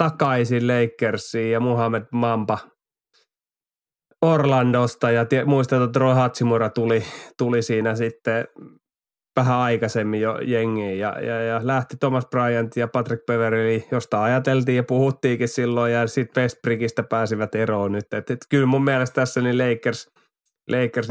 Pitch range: 115-125 Hz